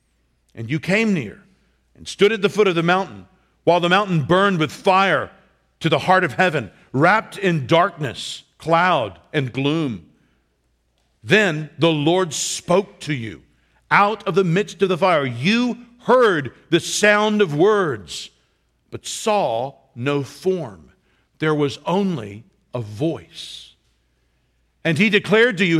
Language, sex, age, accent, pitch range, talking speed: English, male, 50-69, American, 125-195 Hz, 145 wpm